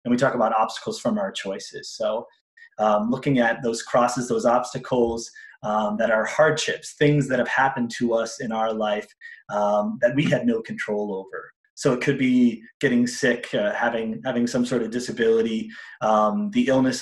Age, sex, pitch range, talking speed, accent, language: 30-49, male, 110-150 Hz, 185 wpm, American, English